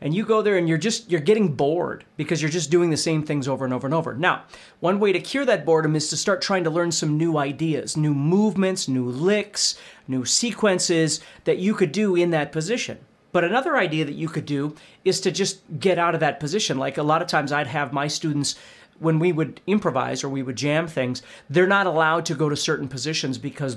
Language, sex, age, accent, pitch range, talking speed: English, male, 40-59, American, 140-180 Hz, 235 wpm